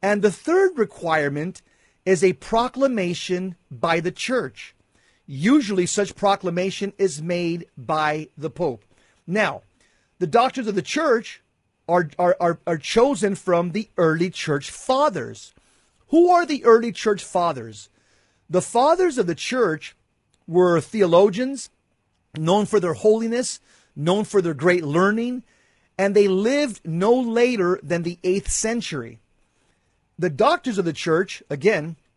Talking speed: 130 wpm